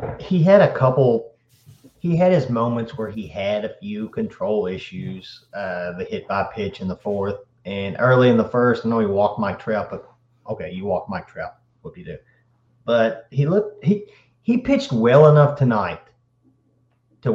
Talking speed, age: 185 wpm, 30-49